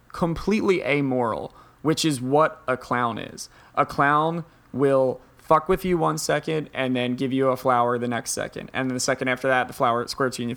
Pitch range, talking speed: 125-150 Hz, 210 wpm